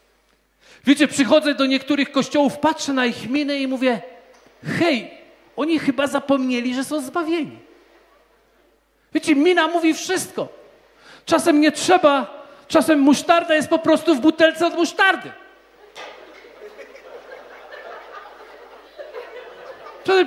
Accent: native